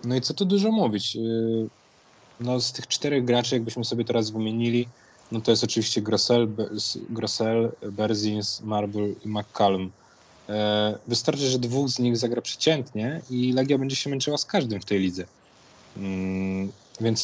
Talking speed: 150 wpm